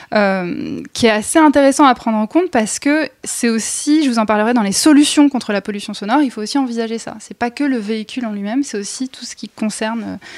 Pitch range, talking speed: 205-265 Hz, 245 wpm